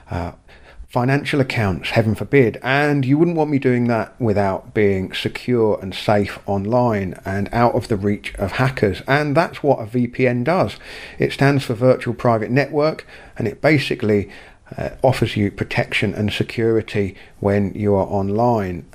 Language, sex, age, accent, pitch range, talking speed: English, male, 40-59, British, 105-135 Hz, 155 wpm